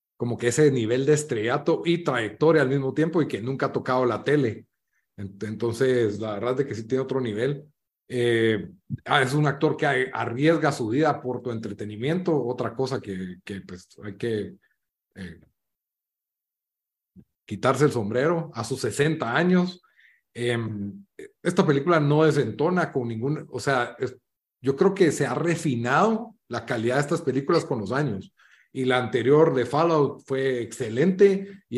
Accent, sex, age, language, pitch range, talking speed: Mexican, male, 40-59, Spanish, 120-160 Hz, 160 wpm